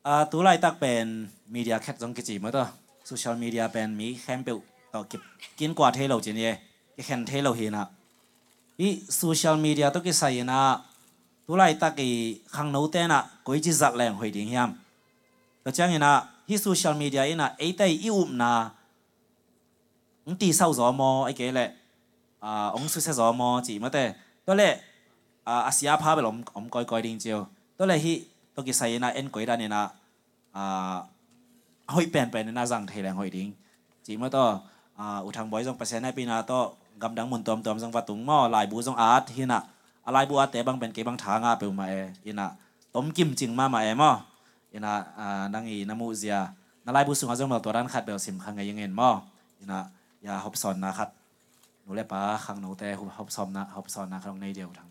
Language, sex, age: English, male, 20-39